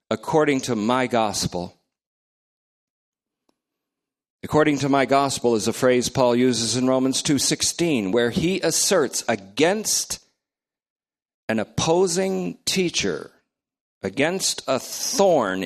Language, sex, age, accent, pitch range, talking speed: English, male, 50-69, American, 115-155 Hz, 100 wpm